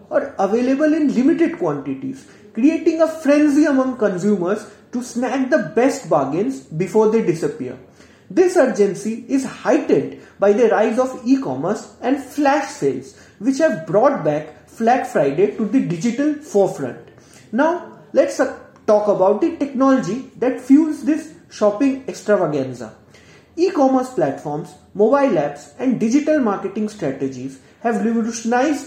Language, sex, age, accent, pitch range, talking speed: English, male, 30-49, Indian, 190-275 Hz, 130 wpm